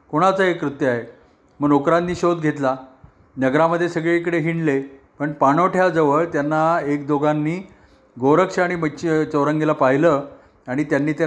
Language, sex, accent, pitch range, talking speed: Marathi, male, native, 135-160 Hz, 130 wpm